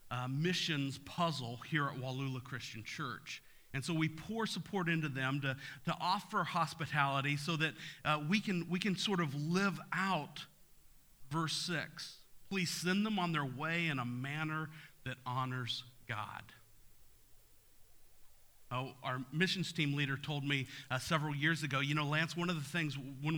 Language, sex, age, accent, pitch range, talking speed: English, male, 40-59, American, 135-170 Hz, 160 wpm